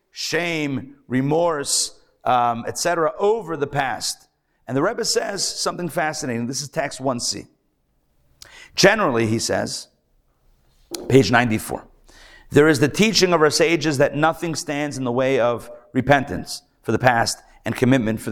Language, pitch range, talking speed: English, 130-170 Hz, 145 wpm